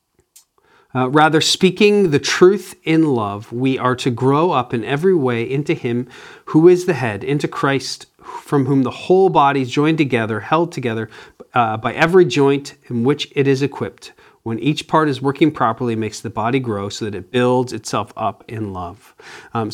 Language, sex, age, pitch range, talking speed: English, male, 40-59, 120-160 Hz, 190 wpm